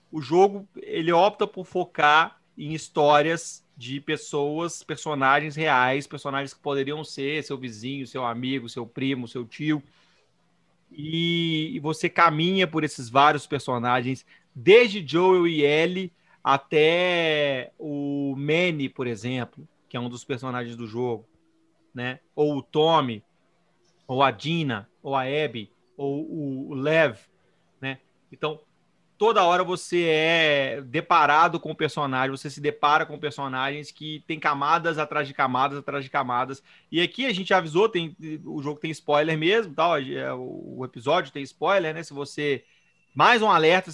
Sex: male